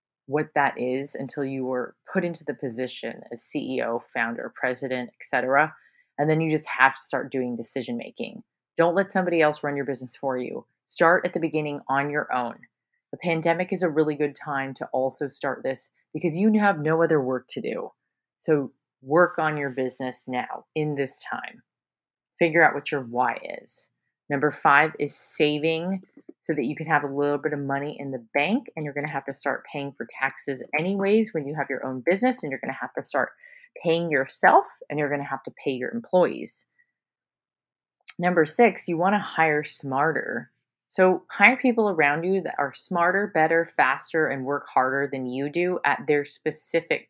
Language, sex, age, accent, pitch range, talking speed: English, female, 30-49, American, 135-170 Hz, 195 wpm